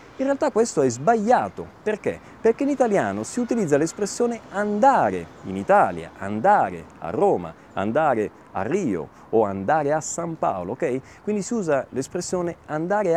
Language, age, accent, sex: Italian, 30-49, native, male